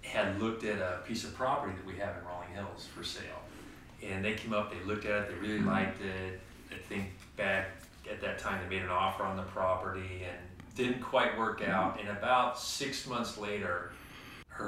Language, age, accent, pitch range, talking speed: English, 30-49, American, 90-105 Hz, 210 wpm